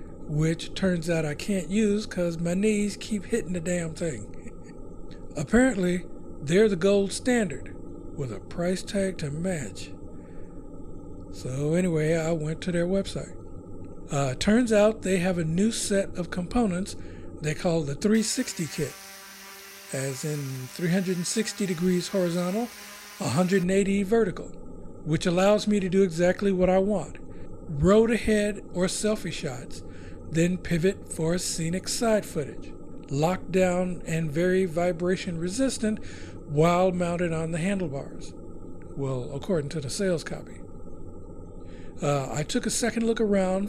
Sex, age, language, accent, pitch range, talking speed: male, 60-79, English, American, 135-195 Hz, 135 wpm